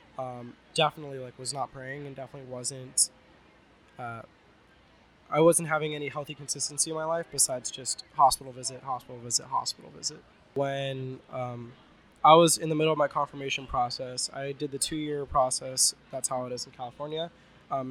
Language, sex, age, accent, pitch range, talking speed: English, male, 20-39, American, 130-150 Hz, 170 wpm